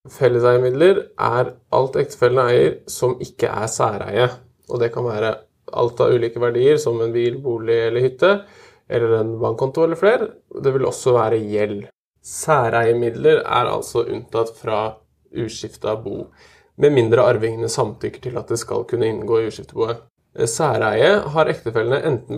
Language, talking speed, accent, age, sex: English, 150 wpm, Norwegian, 20-39, male